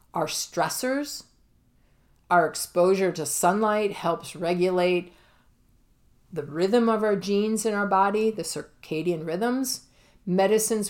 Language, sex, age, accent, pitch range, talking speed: English, female, 50-69, American, 160-205 Hz, 110 wpm